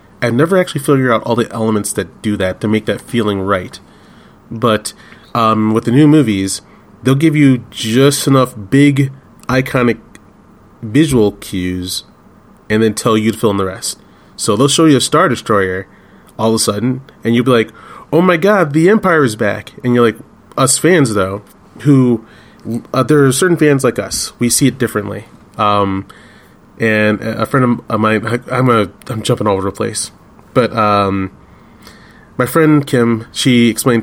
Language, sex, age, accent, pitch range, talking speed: English, male, 30-49, American, 105-135 Hz, 180 wpm